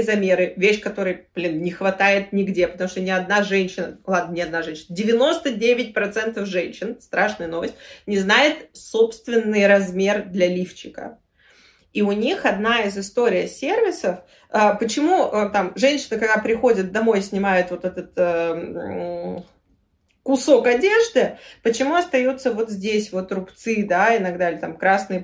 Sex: female